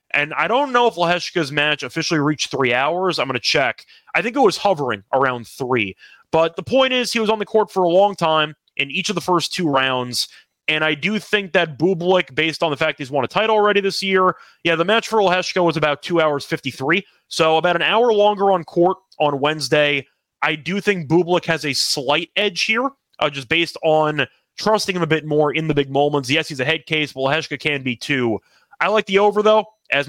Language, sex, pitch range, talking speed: English, male, 145-185 Hz, 230 wpm